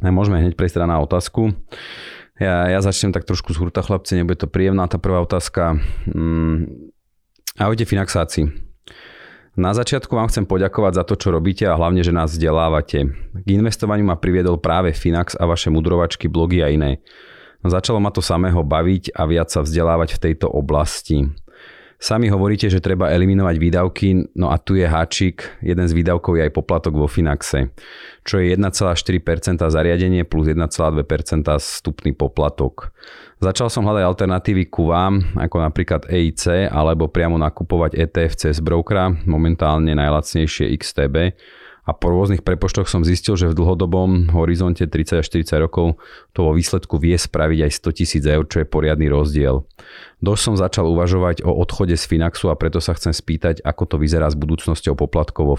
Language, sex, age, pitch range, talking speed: Slovak, male, 30-49, 80-95 Hz, 165 wpm